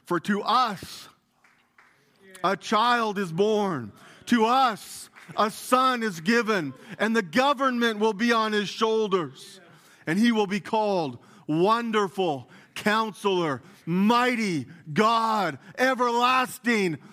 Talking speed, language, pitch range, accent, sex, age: 110 wpm, English, 140-235 Hz, American, male, 40-59